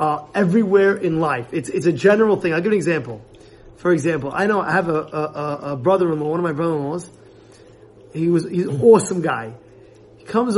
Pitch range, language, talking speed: 155-205 Hz, English, 200 wpm